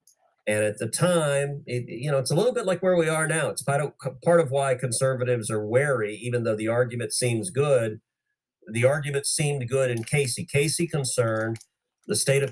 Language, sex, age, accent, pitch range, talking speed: English, male, 40-59, American, 110-140 Hz, 200 wpm